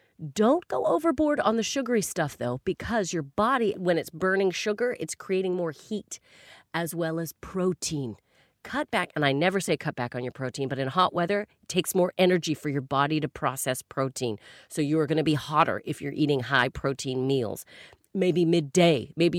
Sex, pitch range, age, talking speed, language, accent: female, 155-220 Hz, 30-49, 195 wpm, English, American